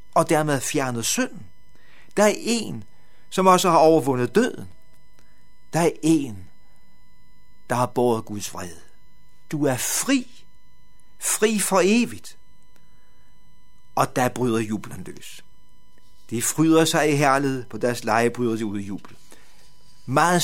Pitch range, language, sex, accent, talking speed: 115-160 Hz, Danish, male, native, 135 wpm